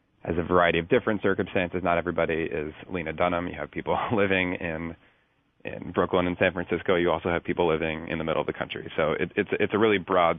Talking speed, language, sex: 225 wpm, English, male